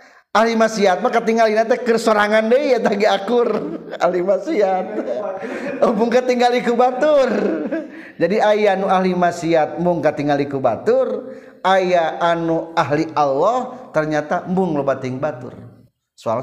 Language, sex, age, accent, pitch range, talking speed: Indonesian, male, 40-59, native, 150-240 Hz, 110 wpm